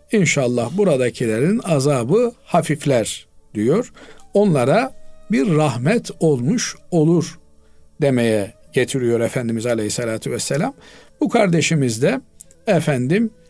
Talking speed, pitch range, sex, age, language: 85 wpm, 130-185 Hz, male, 50-69, Turkish